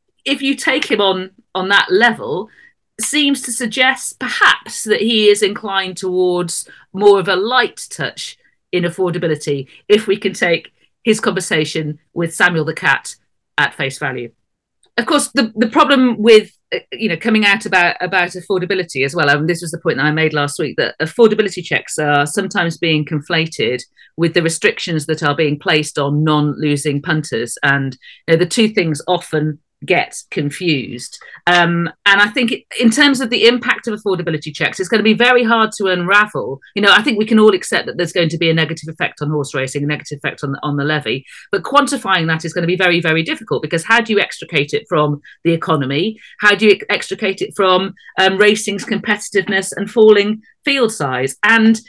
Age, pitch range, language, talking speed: 40-59, 155-215 Hz, English, 195 wpm